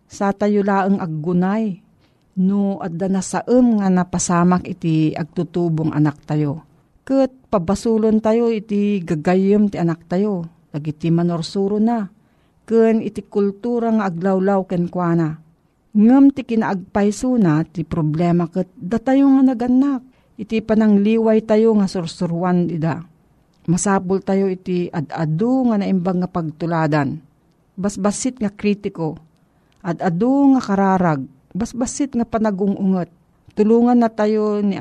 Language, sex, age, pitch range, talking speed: Filipino, female, 50-69, 165-210 Hz, 120 wpm